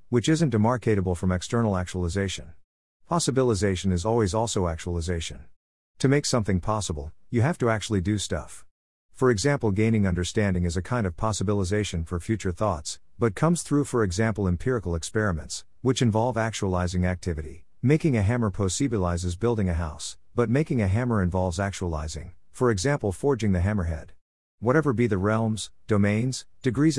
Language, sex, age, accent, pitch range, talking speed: English, male, 50-69, American, 90-115 Hz, 150 wpm